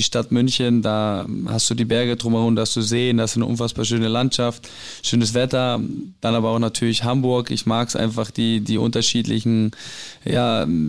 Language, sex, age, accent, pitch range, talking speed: German, male, 20-39, German, 115-125 Hz, 180 wpm